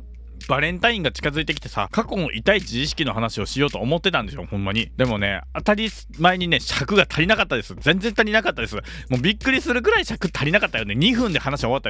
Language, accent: Japanese, native